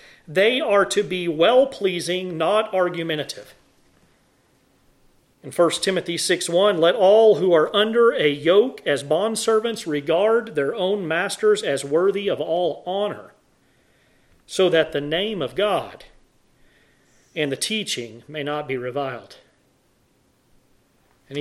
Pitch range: 155-215 Hz